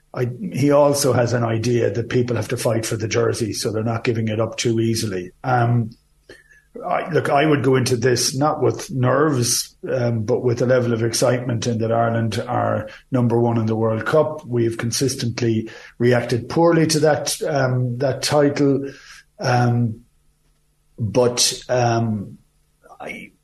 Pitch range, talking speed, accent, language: 120-140 Hz, 160 wpm, Irish, English